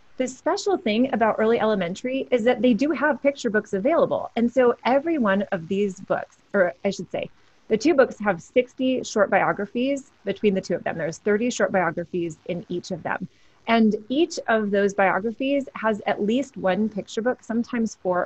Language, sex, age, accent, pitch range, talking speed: English, female, 30-49, American, 195-250 Hz, 190 wpm